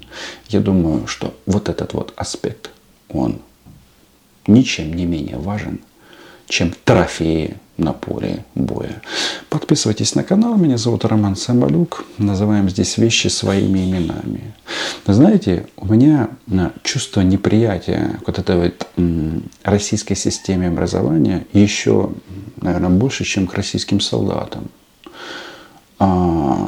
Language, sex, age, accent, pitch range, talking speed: Russian, male, 40-59, native, 90-110 Hz, 110 wpm